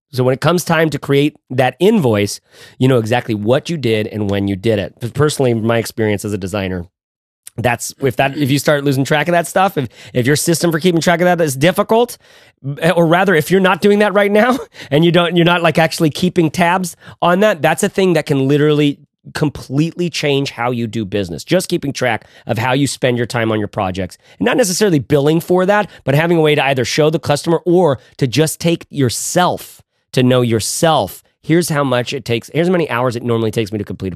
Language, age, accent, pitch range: English, 30-49, American, 115-170 Hz